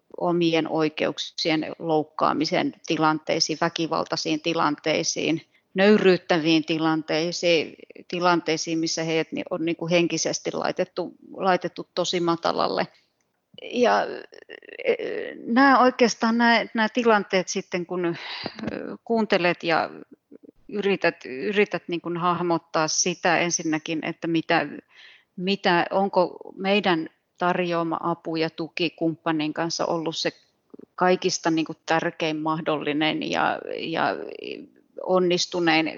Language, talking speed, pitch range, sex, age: Finnish, 90 wpm, 160-190 Hz, female, 30-49